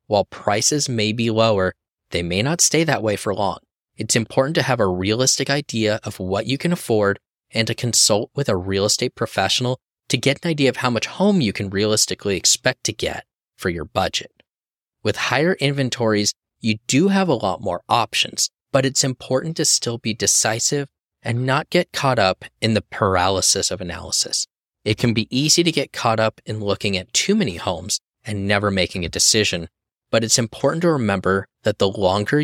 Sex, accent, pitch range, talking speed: male, American, 100-135 Hz, 190 wpm